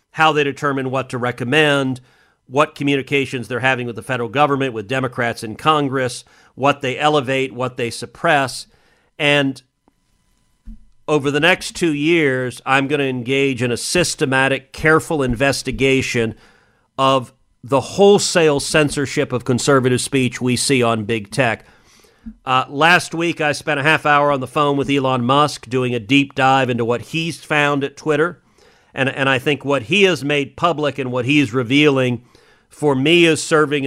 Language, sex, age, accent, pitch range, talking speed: English, male, 40-59, American, 130-155 Hz, 165 wpm